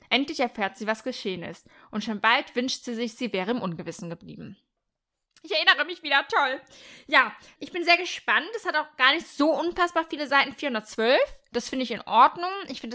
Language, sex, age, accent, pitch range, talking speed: German, female, 10-29, German, 220-280 Hz, 205 wpm